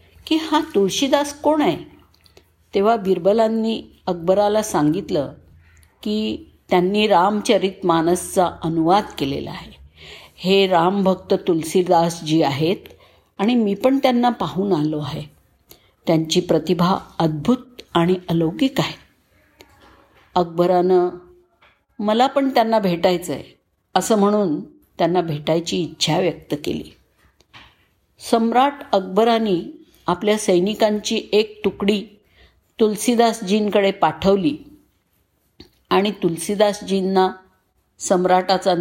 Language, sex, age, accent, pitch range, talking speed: Marathi, female, 50-69, native, 175-230 Hz, 85 wpm